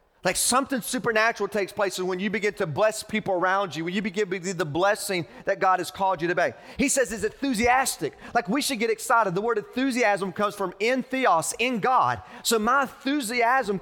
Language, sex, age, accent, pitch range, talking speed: English, male, 30-49, American, 180-235 Hz, 210 wpm